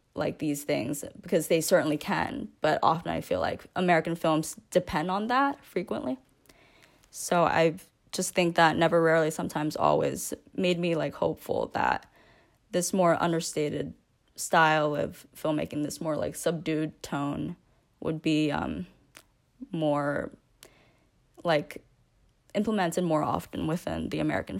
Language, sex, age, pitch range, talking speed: English, female, 10-29, 155-190 Hz, 130 wpm